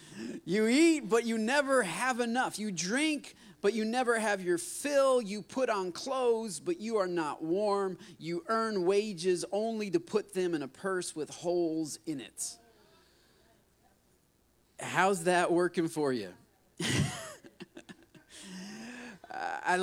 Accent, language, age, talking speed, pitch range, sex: American, English, 40-59, 135 wpm, 185-265 Hz, male